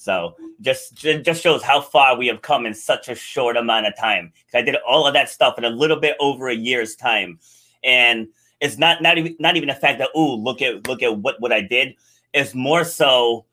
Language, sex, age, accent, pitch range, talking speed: English, male, 30-49, American, 120-160 Hz, 230 wpm